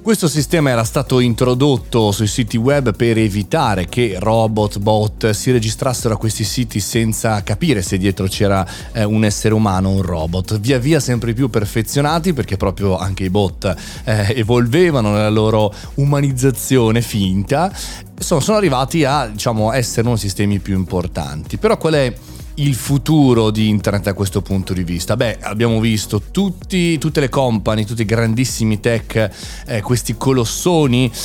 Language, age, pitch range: Italian, 30-49, 100-125 Hz